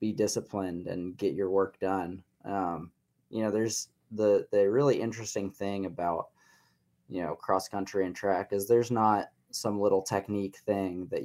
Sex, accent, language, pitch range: male, American, English, 90-105 Hz